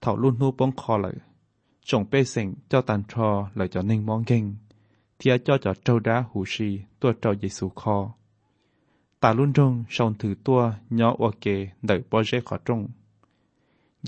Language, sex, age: Thai, male, 20-39